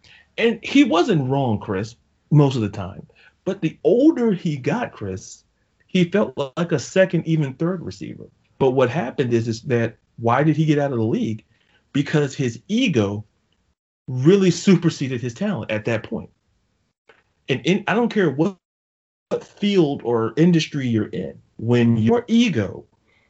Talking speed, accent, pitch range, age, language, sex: 155 wpm, American, 110-165 Hz, 40-59, English, male